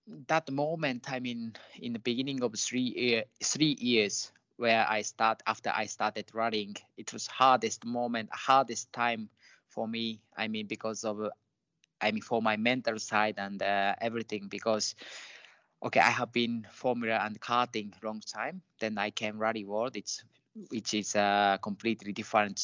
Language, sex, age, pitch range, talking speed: English, male, 20-39, 105-120 Hz, 165 wpm